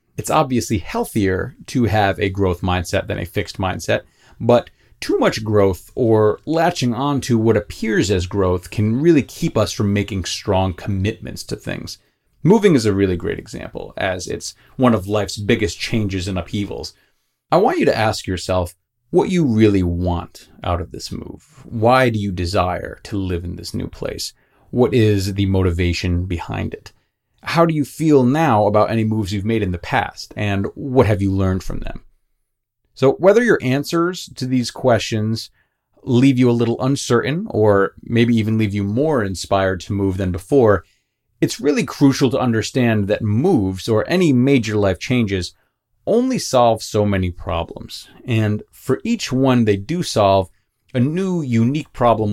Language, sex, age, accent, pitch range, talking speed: English, male, 30-49, American, 95-130 Hz, 170 wpm